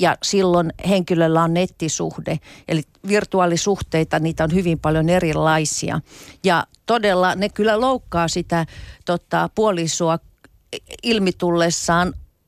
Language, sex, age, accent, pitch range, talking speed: Finnish, female, 50-69, native, 160-195 Hz, 100 wpm